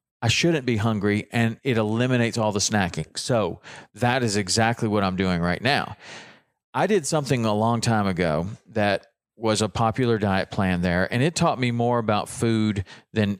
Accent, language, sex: American, English, male